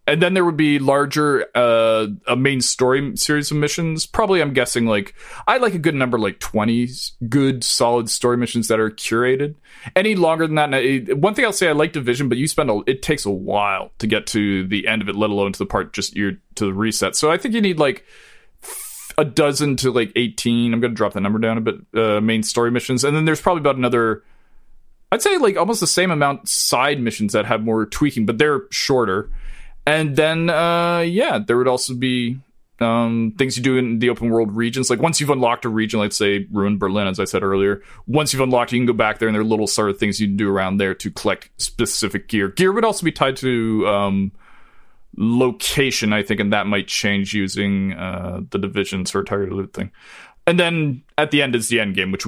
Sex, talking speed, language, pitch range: male, 230 wpm, English, 105-150 Hz